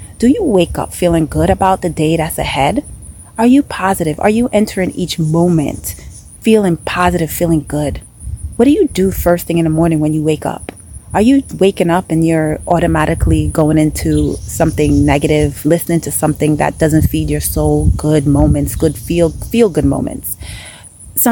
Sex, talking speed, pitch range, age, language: female, 175 wpm, 145-195 Hz, 30-49, English